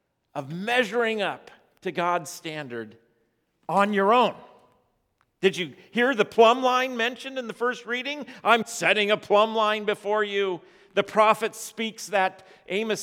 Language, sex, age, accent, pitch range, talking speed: English, male, 50-69, American, 175-235 Hz, 145 wpm